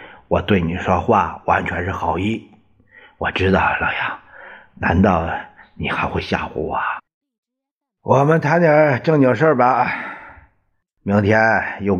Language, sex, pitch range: Chinese, male, 90-105 Hz